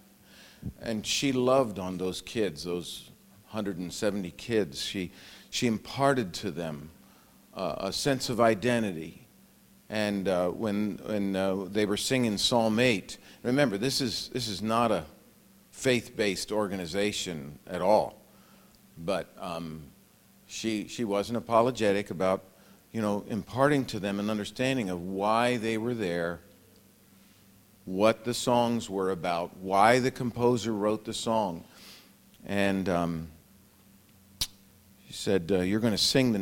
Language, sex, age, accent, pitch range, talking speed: English, male, 50-69, American, 95-120 Hz, 130 wpm